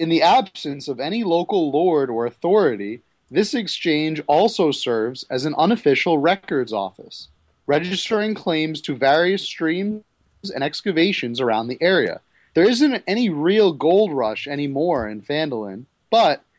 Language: English